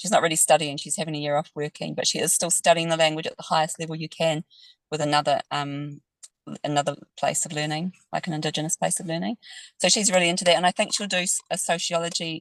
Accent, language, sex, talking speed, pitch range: British, English, female, 230 wpm, 155-180 Hz